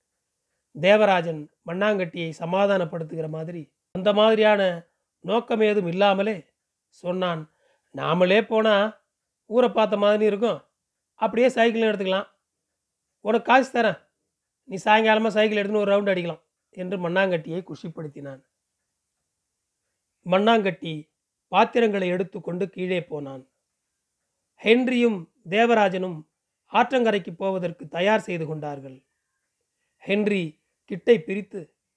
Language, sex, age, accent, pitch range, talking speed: Tamil, male, 30-49, native, 170-220 Hz, 90 wpm